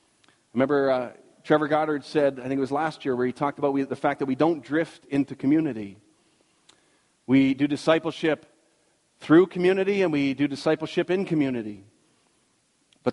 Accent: American